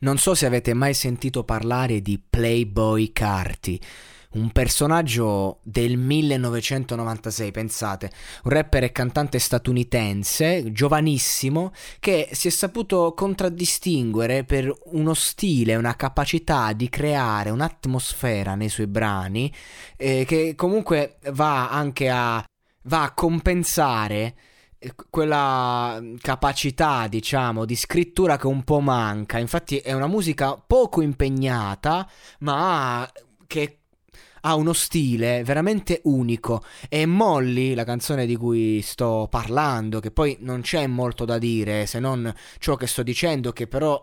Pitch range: 115-155 Hz